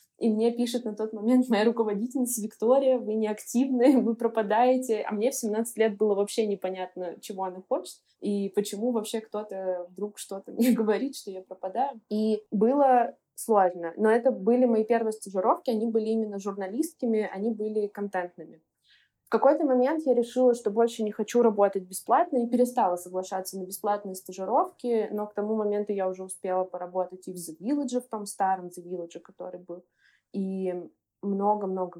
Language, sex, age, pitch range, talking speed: Russian, female, 20-39, 190-230 Hz, 165 wpm